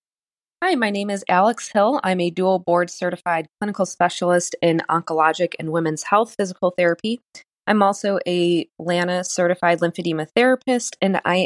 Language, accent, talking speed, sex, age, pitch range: English, American, 150 wpm, female, 20-39, 165-200 Hz